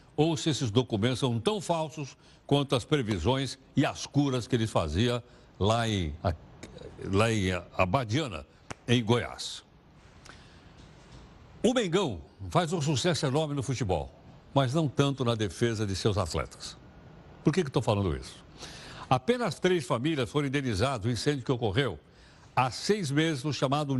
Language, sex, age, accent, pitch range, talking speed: Portuguese, male, 60-79, Brazilian, 110-150 Hz, 150 wpm